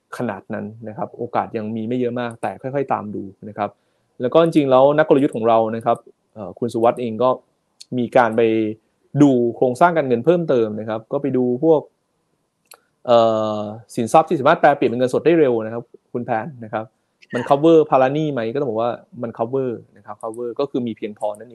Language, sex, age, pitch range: Thai, male, 20-39, 115-140 Hz